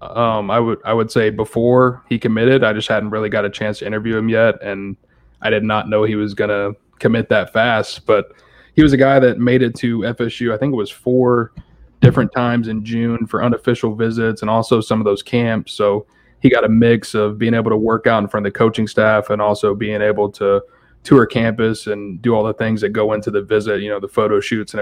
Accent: American